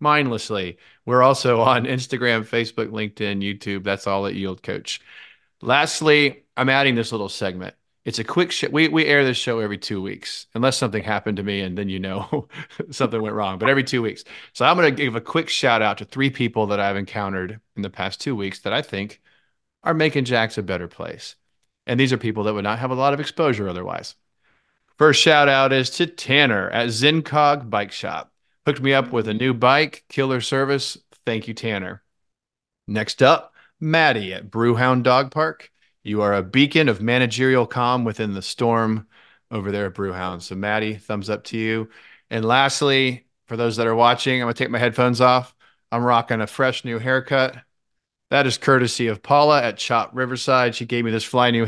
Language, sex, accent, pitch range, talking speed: English, male, American, 105-130 Hz, 200 wpm